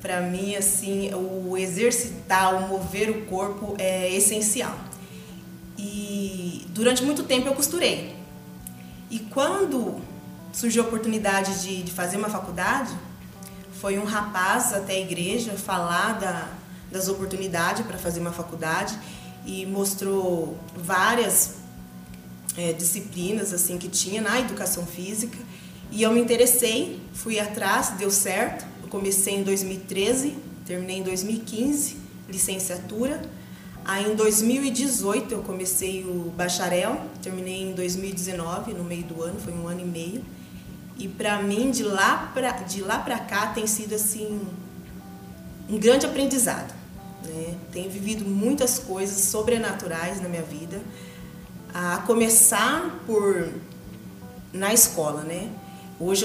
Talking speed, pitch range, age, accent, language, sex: 125 wpm, 180-215 Hz, 20-39, Brazilian, Portuguese, female